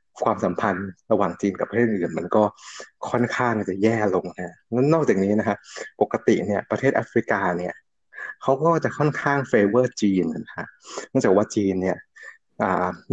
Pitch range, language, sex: 105-140 Hz, Thai, male